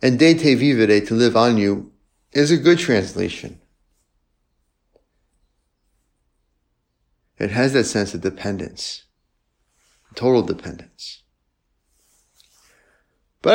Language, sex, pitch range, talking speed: English, male, 90-105 Hz, 95 wpm